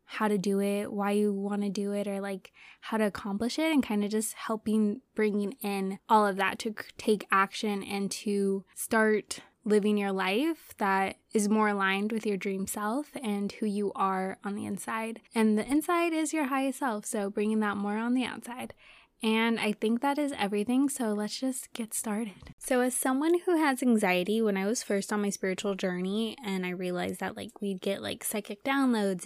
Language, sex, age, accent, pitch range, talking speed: English, female, 20-39, American, 200-230 Hz, 205 wpm